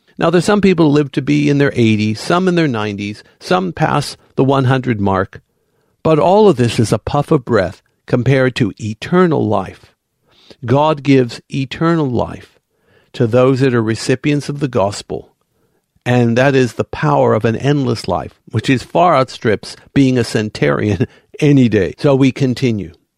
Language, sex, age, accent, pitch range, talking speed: English, male, 60-79, American, 115-150 Hz, 170 wpm